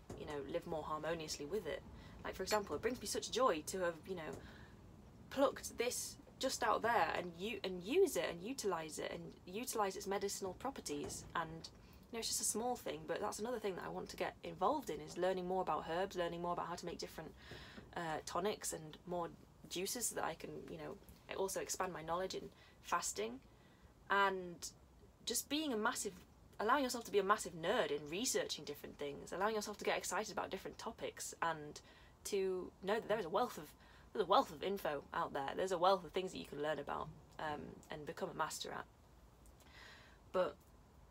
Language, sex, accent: English, female, British